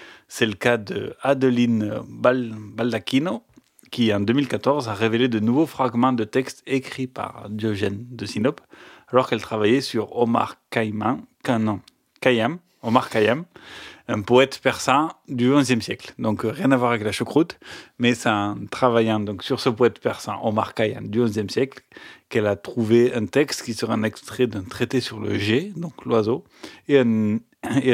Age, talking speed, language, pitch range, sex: 30-49, 155 wpm, French, 110-130 Hz, male